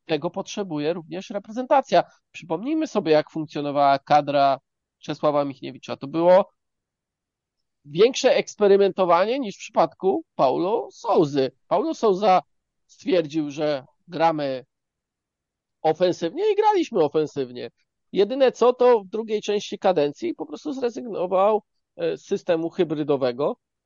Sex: male